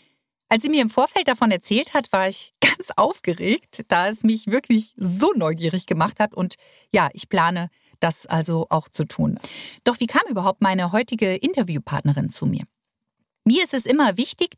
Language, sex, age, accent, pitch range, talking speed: German, female, 40-59, German, 185-255 Hz, 175 wpm